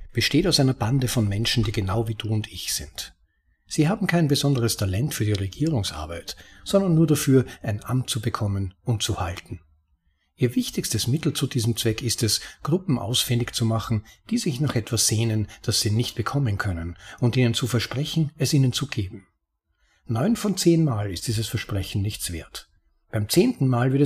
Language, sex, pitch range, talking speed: German, male, 100-135 Hz, 185 wpm